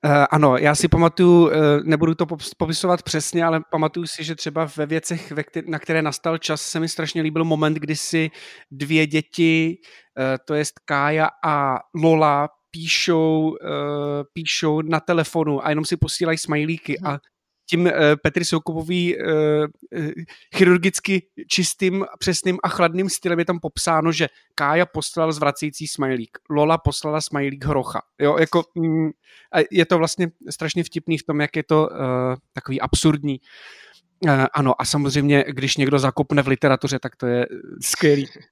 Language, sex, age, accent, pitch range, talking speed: Czech, male, 30-49, native, 145-180 Hz, 150 wpm